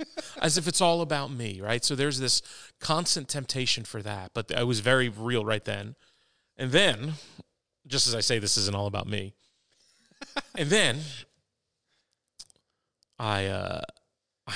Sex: male